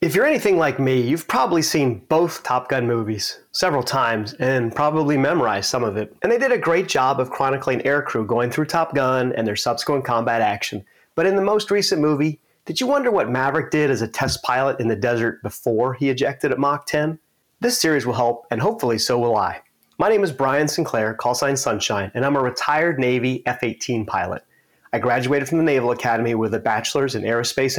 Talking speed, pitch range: 210 wpm, 115-150 Hz